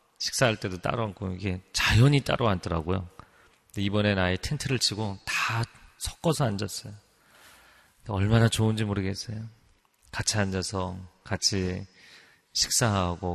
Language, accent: Korean, native